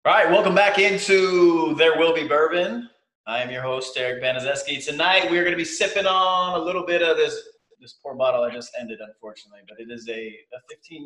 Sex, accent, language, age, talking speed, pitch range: male, American, English, 20-39, 210 wpm, 125-185 Hz